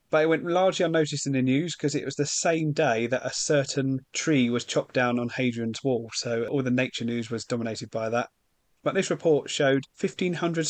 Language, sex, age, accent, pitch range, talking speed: English, male, 30-49, British, 120-150 Hz, 215 wpm